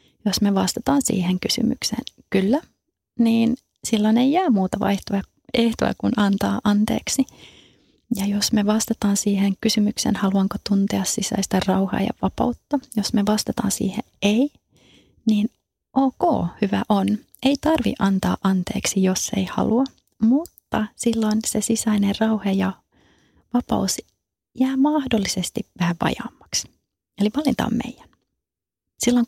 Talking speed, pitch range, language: 120 wpm, 195-235 Hz, Finnish